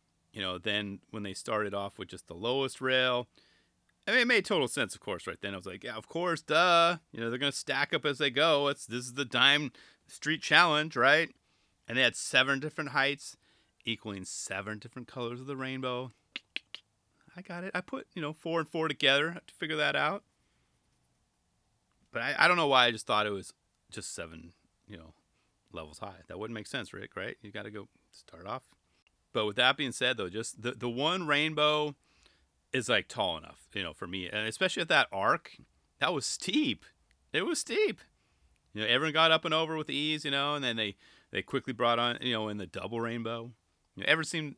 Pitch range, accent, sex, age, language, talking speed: 105-150 Hz, American, male, 30-49, English, 220 wpm